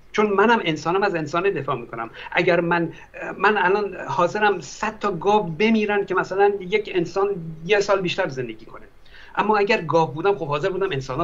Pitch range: 140-195 Hz